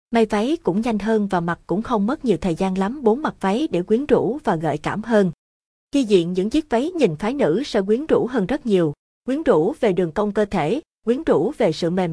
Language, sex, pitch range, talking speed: Vietnamese, female, 180-230 Hz, 245 wpm